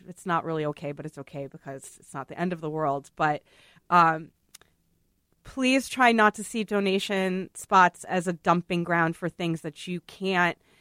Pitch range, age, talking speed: 170-220 Hz, 30-49, 185 wpm